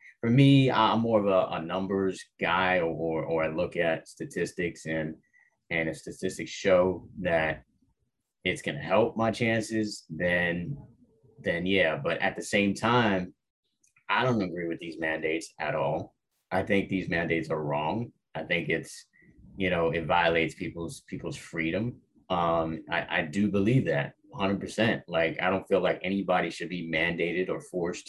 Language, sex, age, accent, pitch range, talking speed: English, male, 30-49, American, 85-105 Hz, 165 wpm